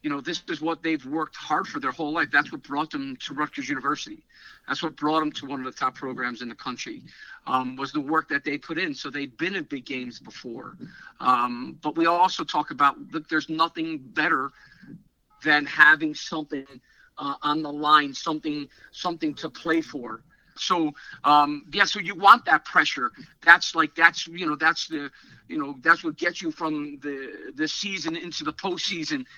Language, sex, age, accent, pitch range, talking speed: English, male, 50-69, American, 150-185 Hz, 200 wpm